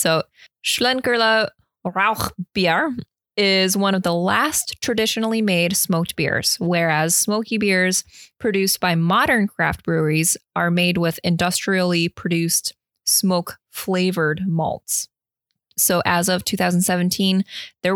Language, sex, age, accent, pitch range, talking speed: English, female, 20-39, American, 170-200 Hz, 110 wpm